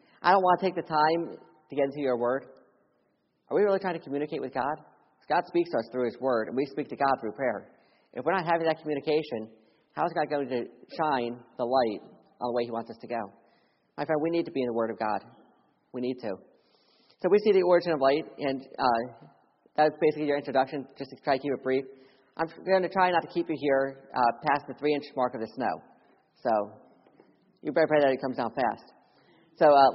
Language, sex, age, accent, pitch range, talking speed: English, male, 40-59, American, 130-170 Hz, 240 wpm